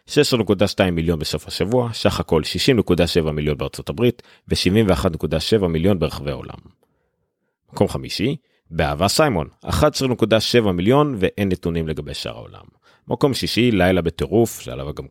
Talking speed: 125 wpm